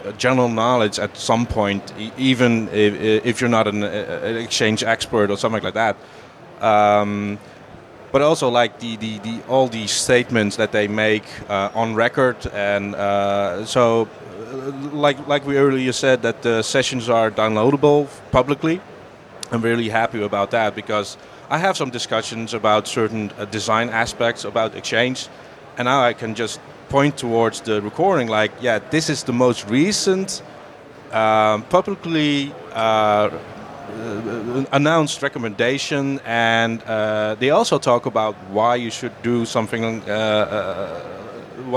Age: 30-49